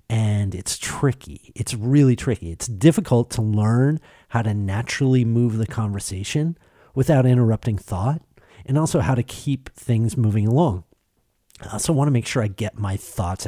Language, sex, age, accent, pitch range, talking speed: English, male, 40-59, American, 100-125 Hz, 165 wpm